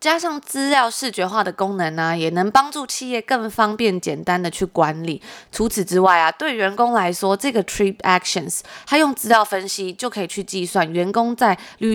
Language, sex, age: Chinese, female, 20-39